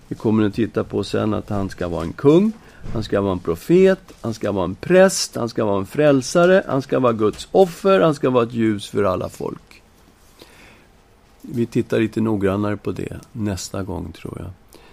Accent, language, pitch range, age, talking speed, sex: native, Swedish, 100-135 Hz, 50-69, 200 wpm, male